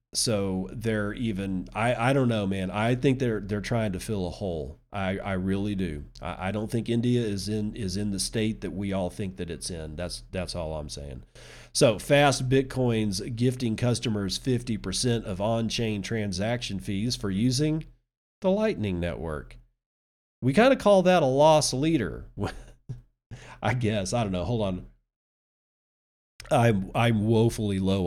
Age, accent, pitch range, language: 40-59, American, 95-125 Hz, English